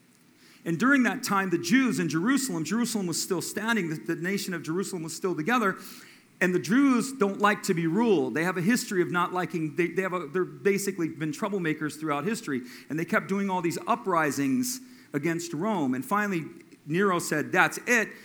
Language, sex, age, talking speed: English, male, 40-59, 185 wpm